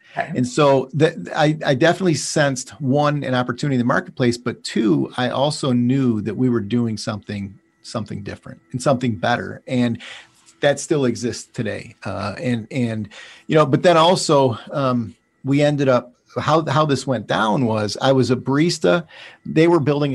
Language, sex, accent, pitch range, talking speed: English, male, American, 120-150 Hz, 170 wpm